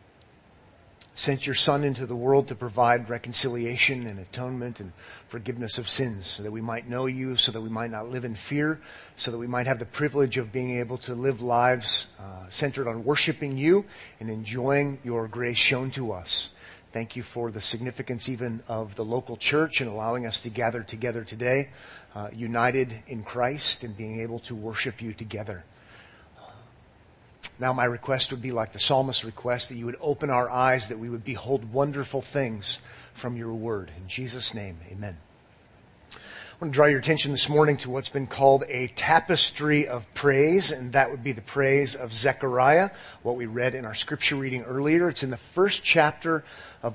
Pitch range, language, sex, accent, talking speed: 115-135 Hz, English, male, American, 195 wpm